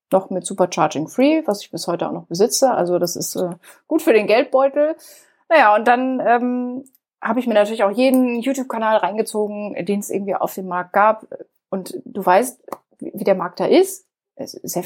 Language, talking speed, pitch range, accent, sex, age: German, 200 wpm, 200-255 Hz, German, female, 30-49